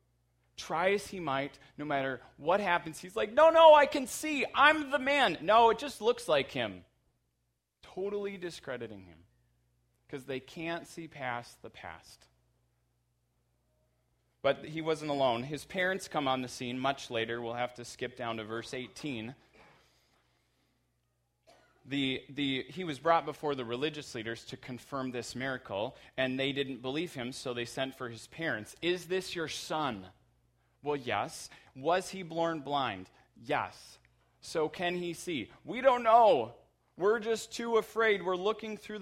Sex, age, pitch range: male, 30-49, 110-175 Hz